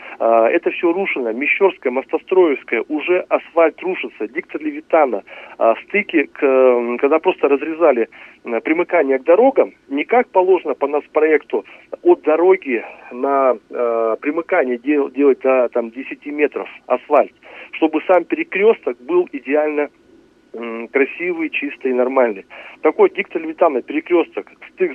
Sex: male